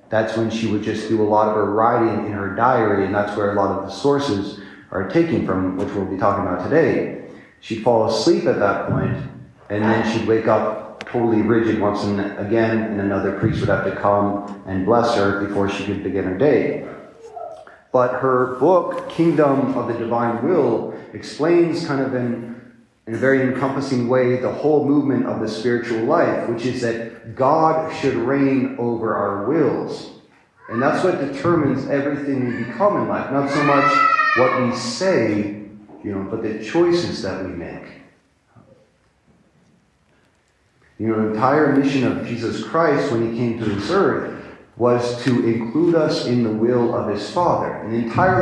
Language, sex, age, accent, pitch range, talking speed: English, male, 40-59, American, 105-140 Hz, 180 wpm